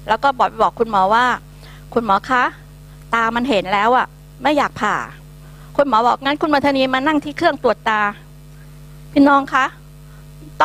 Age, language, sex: 60-79, Thai, female